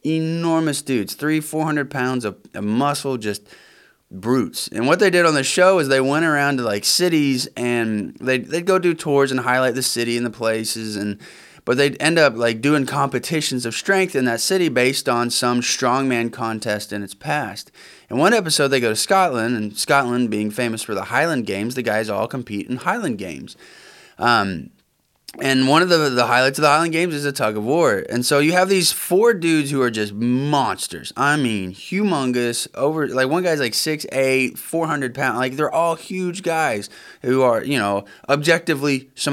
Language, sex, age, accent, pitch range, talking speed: English, male, 20-39, American, 120-155 Hz, 200 wpm